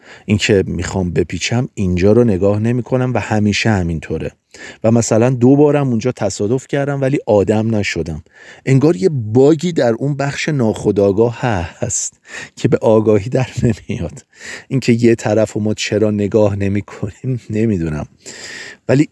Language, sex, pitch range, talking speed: Persian, male, 95-125 Hz, 140 wpm